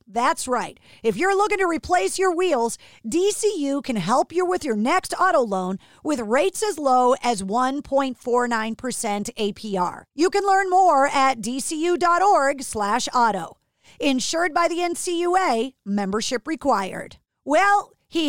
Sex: female